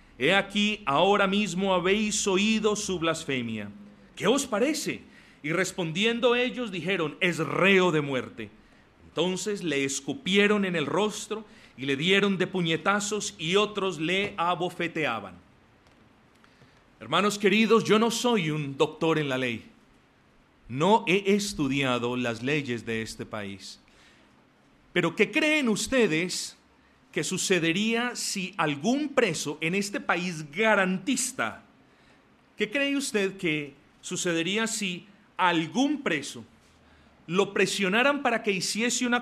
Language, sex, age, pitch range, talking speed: Spanish, male, 40-59, 155-215 Hz, 120 wpm